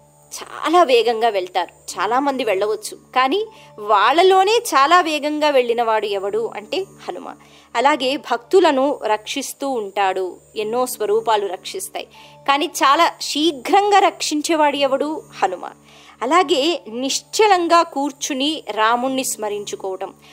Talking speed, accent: 95 wpm, native